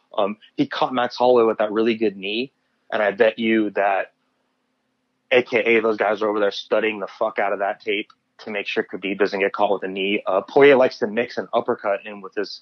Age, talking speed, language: 30-49, 230 wpm, English